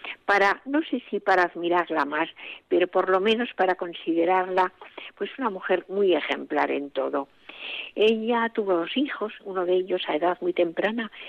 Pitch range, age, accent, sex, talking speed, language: 180-280 Hz, 50-69, Spanish, female, 165 wpm, Spanish